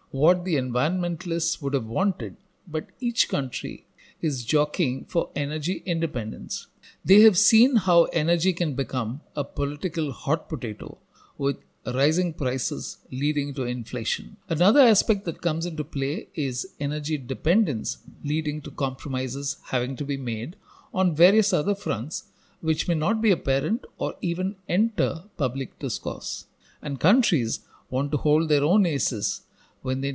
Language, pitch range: English, 135-180 Hz